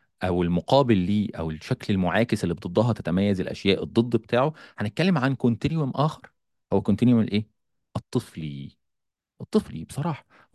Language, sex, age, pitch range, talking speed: Arabic, male, 40-59, 110-155 Hz, 125 wpm